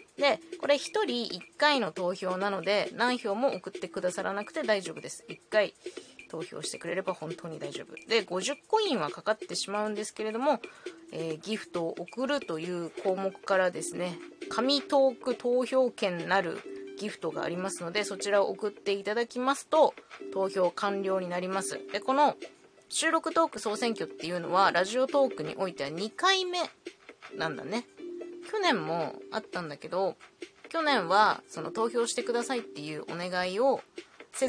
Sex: female